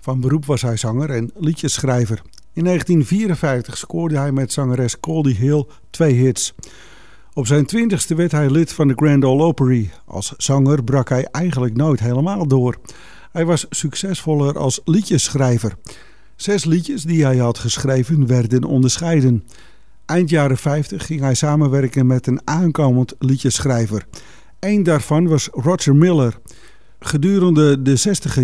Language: English